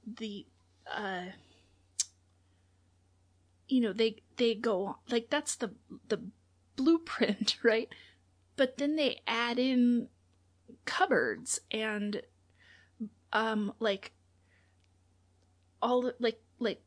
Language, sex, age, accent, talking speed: English, female, 30-49, American, 95 wpm